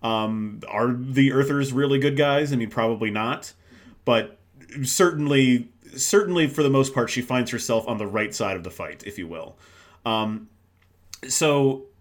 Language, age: English, 30-49